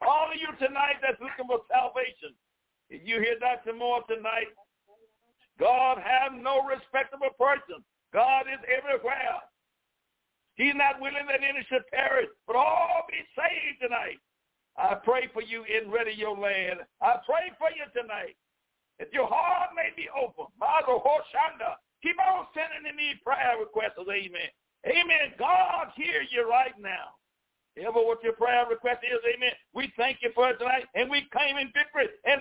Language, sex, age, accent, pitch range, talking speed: English, male, 60-79, American, 240-330 Hz, 155 wpm